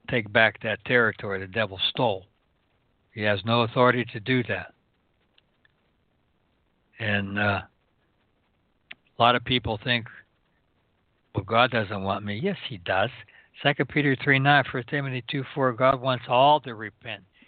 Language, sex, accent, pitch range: English, male, American, 110-140 Hz